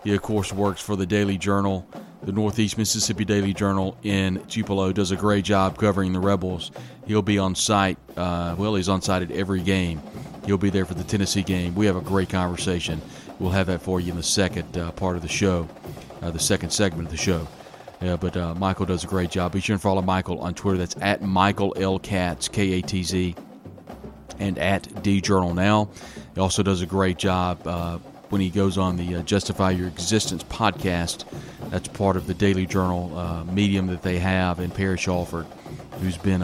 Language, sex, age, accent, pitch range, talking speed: English, male, 40-59, American, 90-100 Hz, 205 wpm